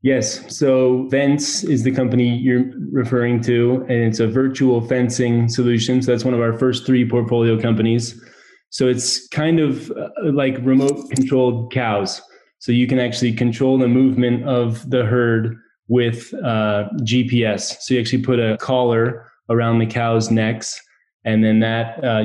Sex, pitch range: male, 115-130 Hz